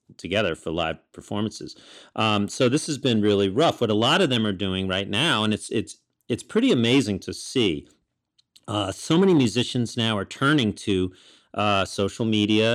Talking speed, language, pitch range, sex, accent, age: 185 wpm, English, 100-120 Hz, male, American, 40-59